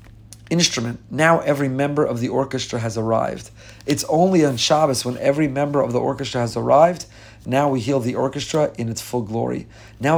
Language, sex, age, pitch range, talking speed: English, male, 40-59, 115-145 Hz, 185 wpm